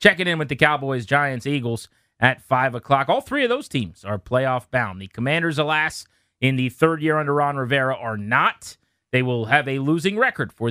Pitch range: 125-170 Hz